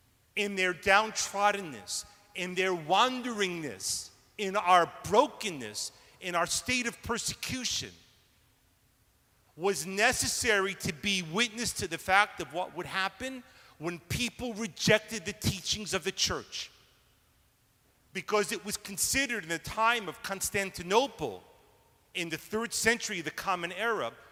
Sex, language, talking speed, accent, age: male, English, 125 wpm, American, 40-59